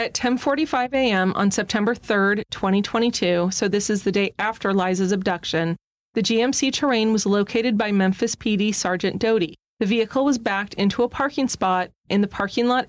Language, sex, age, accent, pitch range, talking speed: English, female, 30-49, American, 190-235 Hz, 170 wpm